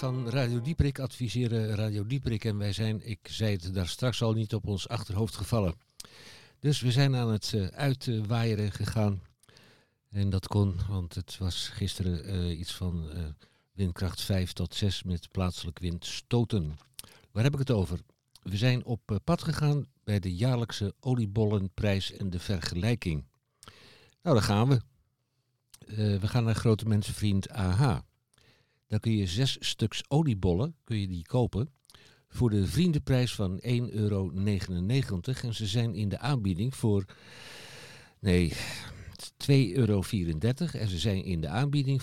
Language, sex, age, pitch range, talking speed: Dutch, male, 60-79, 95-125 Hz, 150 wpm